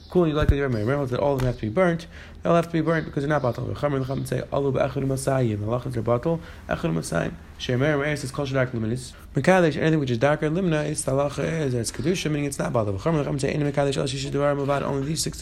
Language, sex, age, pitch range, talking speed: English, male, 20-39, 120-145 Hz, 80 wpm